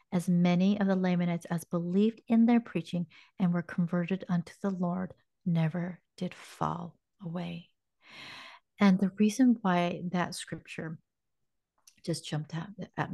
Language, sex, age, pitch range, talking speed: English, female, 40-59, 160-185 Hz, 135 wpm